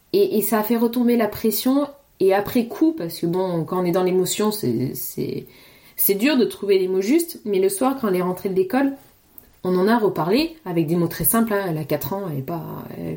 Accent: French